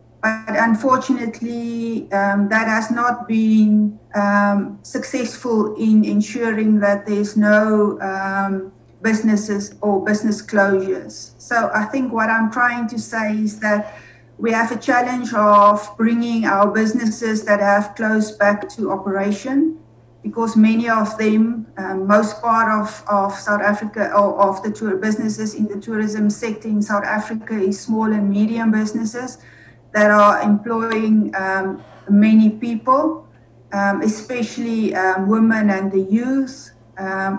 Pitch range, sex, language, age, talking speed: 200-225 Hz, female, English, 40-59, 135 wpm